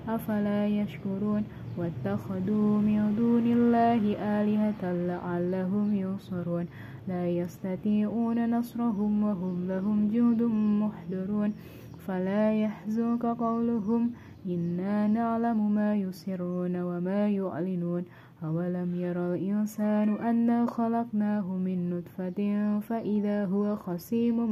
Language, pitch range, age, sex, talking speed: Indonesian, 185-225 Hz, 20-39, female, 85 wpm